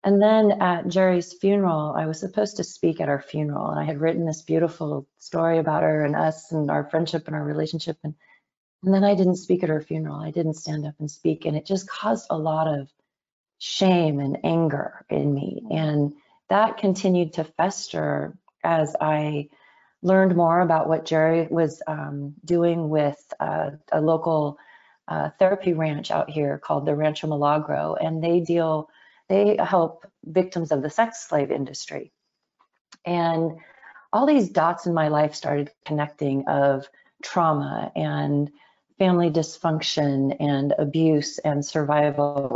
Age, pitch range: 30-49, 150-175 Hz